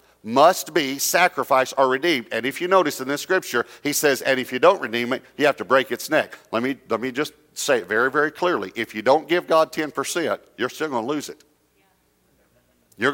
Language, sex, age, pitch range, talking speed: English, male, 50-69, 125-175 Hz, 225 wpm